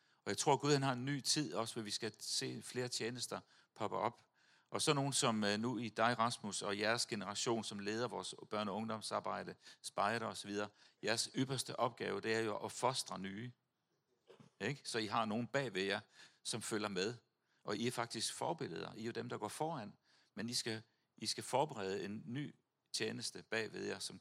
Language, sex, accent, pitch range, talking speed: Danish, male, native, 105-125 Hz, 200 wpm